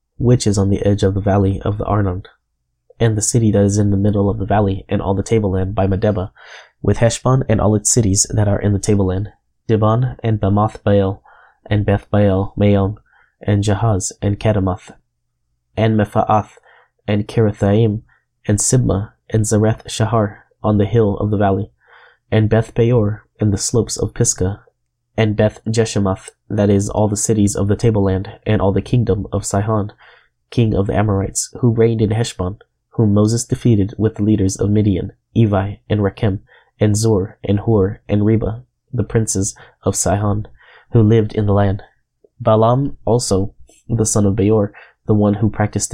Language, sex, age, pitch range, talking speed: English, male, 20-39, 100-110 Hz, 170 wpm